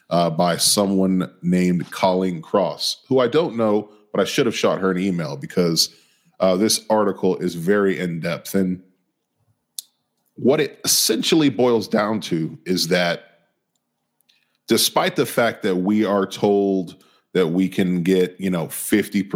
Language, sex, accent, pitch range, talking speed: English, male, American, 85-100 Hz, 150 wpm